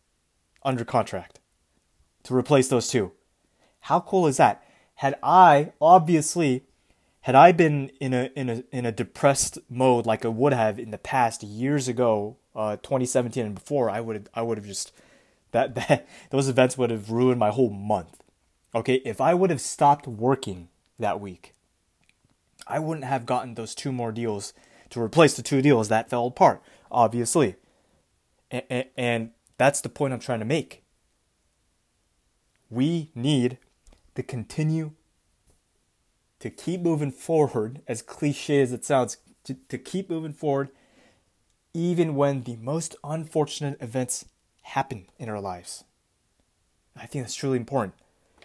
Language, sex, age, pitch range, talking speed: English, male, 20-39, 105-140 Hz, 150 wpm